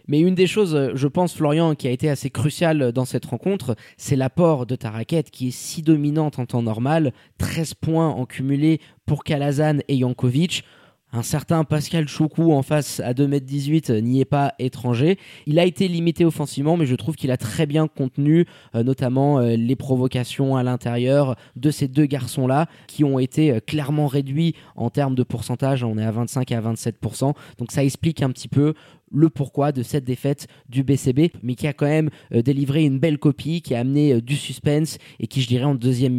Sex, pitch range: male, 125-155 Hz